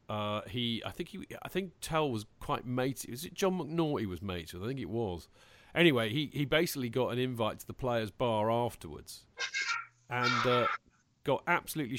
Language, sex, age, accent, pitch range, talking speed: English, male, 40-59, British, 110-140 Hz, 190 wpm